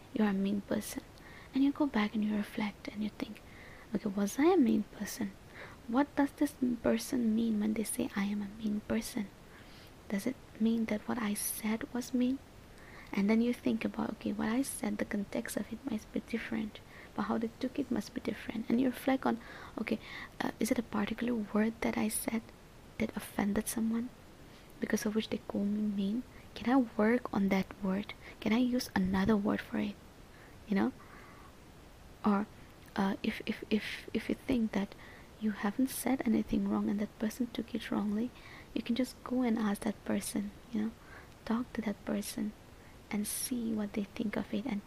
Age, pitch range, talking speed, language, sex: 20-39, 210-245 Hz, 200 wpm, English, female